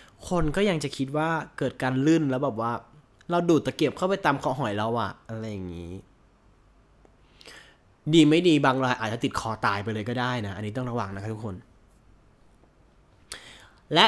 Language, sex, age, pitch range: Thai, male, 20-39, 105-155 Hz